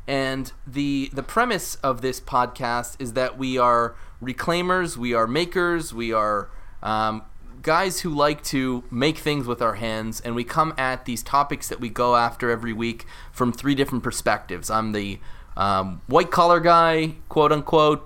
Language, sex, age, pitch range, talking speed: English, male, 20-39, 115-160 Hz, 165 wpm